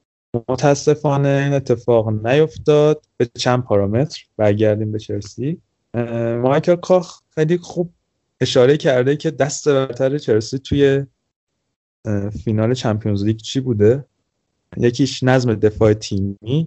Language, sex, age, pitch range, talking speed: Persian, male, 30-49, 110-135 Hz, 110 wpm